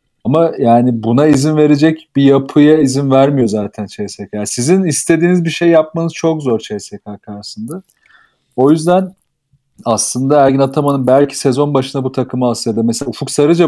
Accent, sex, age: native, male, 40-59